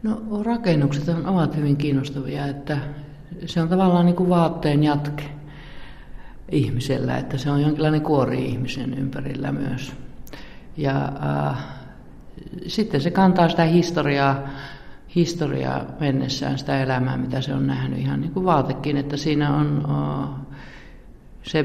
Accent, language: native, Finnish